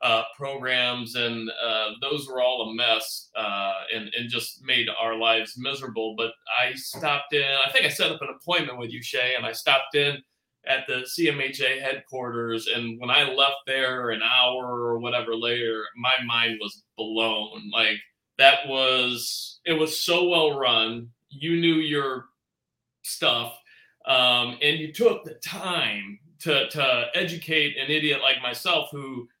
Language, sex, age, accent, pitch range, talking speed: English, male, 30-49, American, 115-145 Hz, 160 wpm